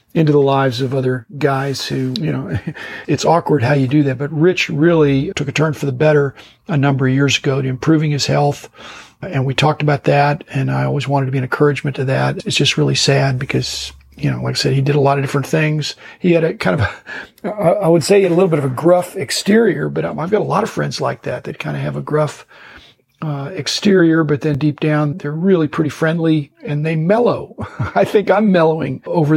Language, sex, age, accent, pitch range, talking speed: English, male, 50-69, American, 135-160 Hz, 235 wpm